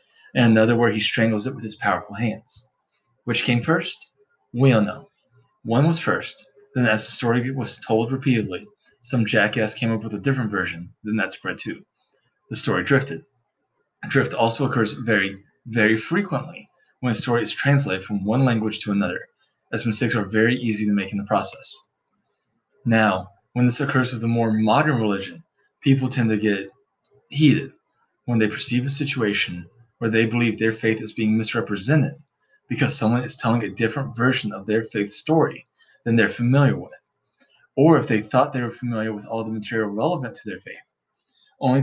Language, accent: English, American